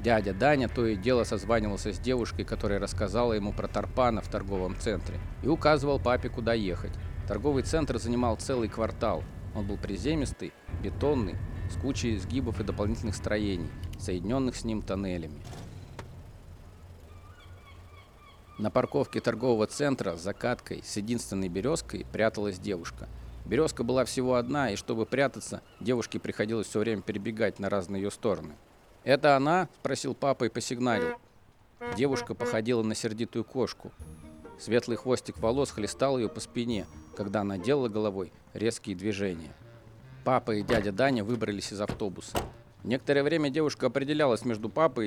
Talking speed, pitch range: 140 wpm, 95-120 Hz